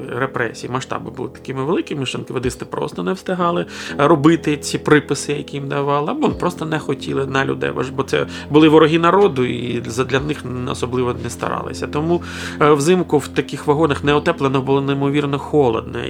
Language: Ukrainian